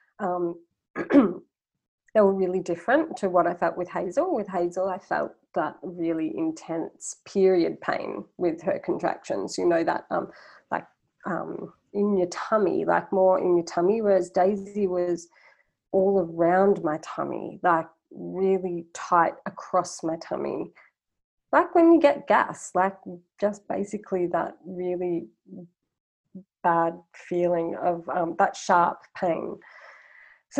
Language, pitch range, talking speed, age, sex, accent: English, 170-200 Hz, 135 wpm, 30-49, female, Australian